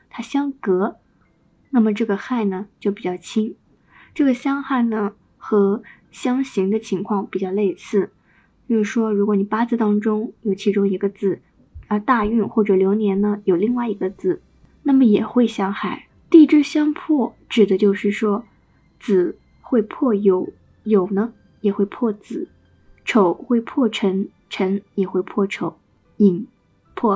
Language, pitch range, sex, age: Chinese, 195-240 Hz, female, 20-39